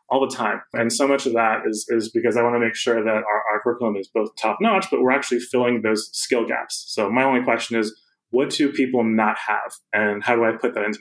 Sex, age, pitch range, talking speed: male, 20-39, 115-135 Hz, 260 wpm